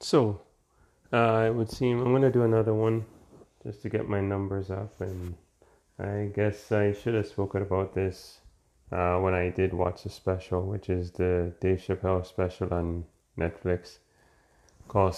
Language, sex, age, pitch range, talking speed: English, male, 30-49, 90-100 Hz, 160 wpm